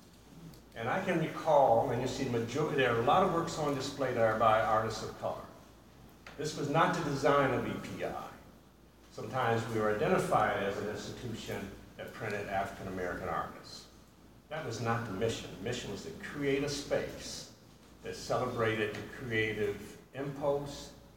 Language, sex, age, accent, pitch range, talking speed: English, male, 60-79, American, 110-145 Hz, 165 wpm